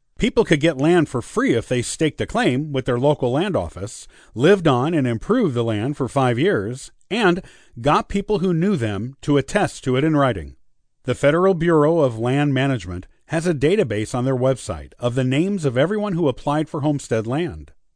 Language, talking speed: English, 195 wpm